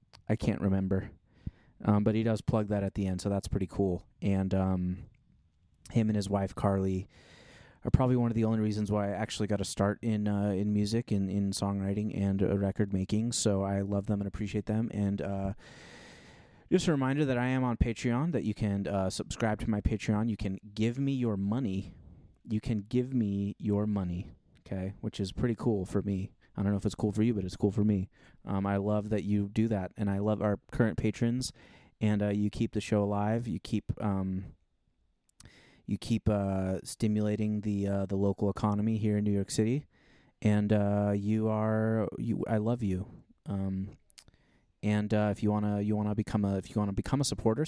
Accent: American